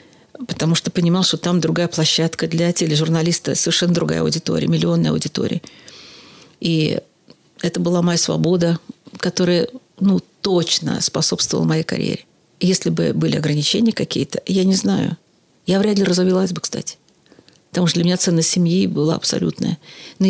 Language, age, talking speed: Russian, 50-69, 140 wpm